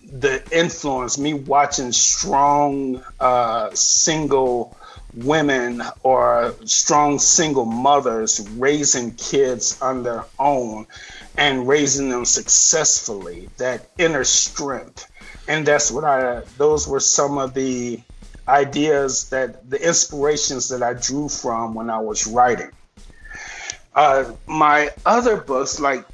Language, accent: English, American